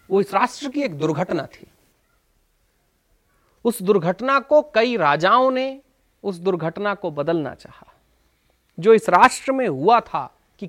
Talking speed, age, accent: 140 wpm, 40-59, native